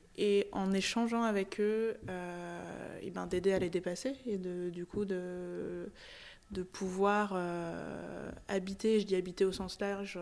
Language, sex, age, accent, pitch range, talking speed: French, female, 20-39, French, 175-200 Hz, 160 wpm